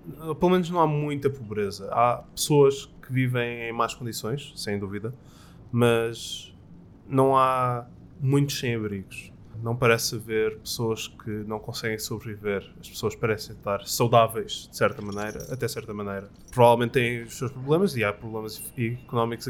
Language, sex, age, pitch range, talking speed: Portuguese, male, 20-39, 110-135 Hz, 150 wpm